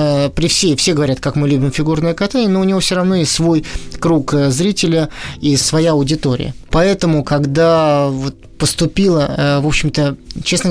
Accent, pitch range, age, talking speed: native, 140-165 Hz, 20-39, 150 wpm